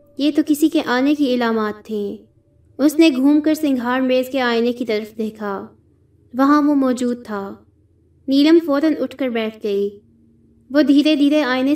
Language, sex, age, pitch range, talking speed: Urdu, female, 20-39, 200-280 Hz, 170 wpm